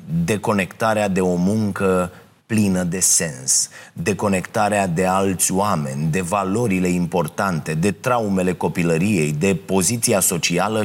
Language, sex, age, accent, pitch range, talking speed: Romanian, male, 30-49, native, 90-115 Hz, 110 wpm